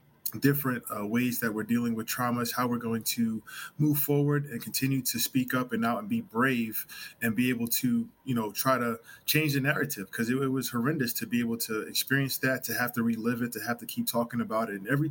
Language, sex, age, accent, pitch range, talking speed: English, male, 20-39, American, 115-135 Hz, 240 wpm